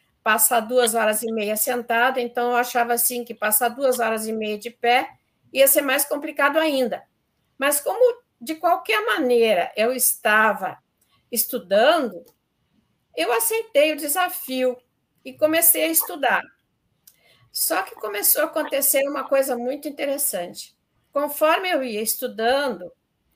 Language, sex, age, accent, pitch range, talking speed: Portuguese, female, 50-69, Brazilian, 220-290 Hz, 135 wpm